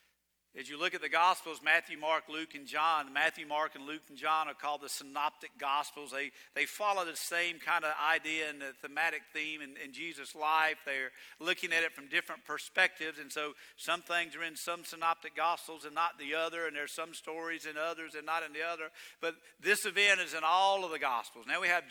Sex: male